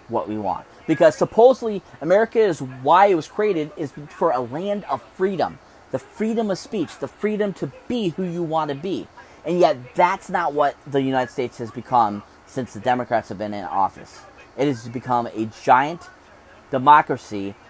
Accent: American